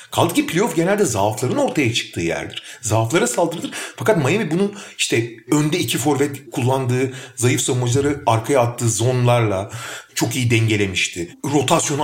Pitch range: 120-195 Hz